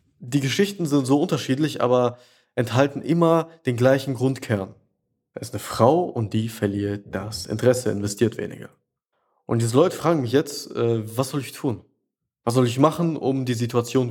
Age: 20-39